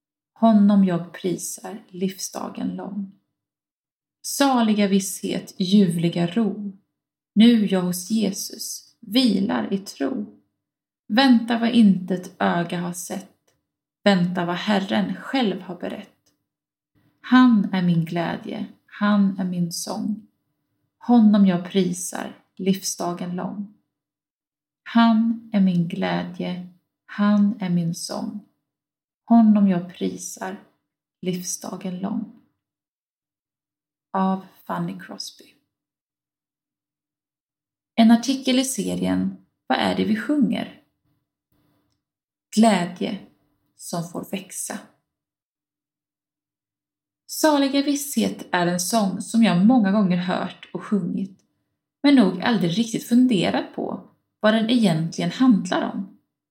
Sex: female